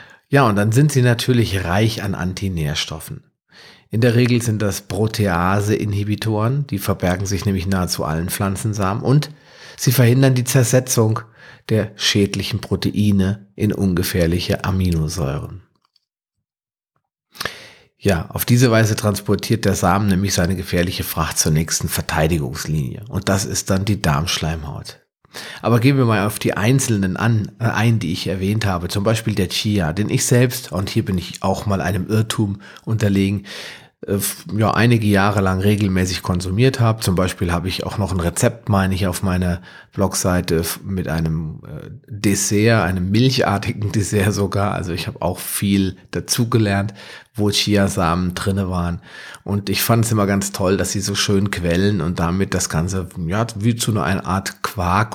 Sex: male